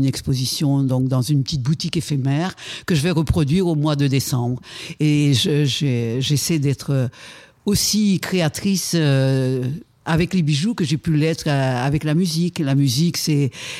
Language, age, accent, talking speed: French, 60-79, French, 160 wpm